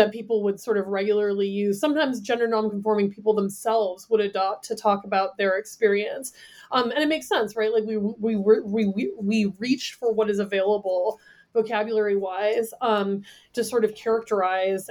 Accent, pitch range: American, 200-225 Hz